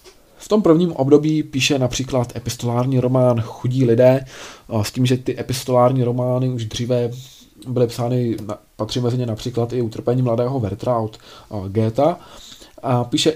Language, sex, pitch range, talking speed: Czech, male, 120-145 Hz, 140 wpm